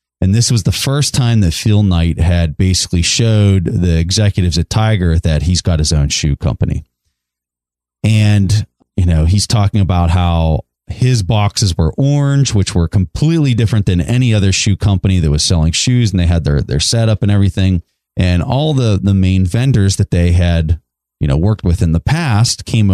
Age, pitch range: 30-49, 85-110 Hz